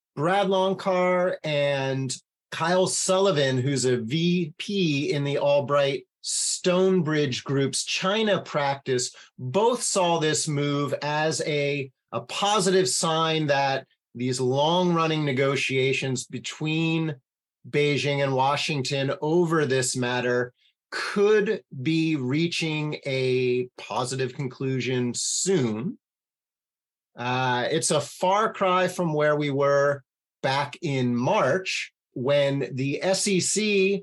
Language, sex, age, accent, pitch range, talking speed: English, male, 30-49, American, 135-185 Hz, 100 wpm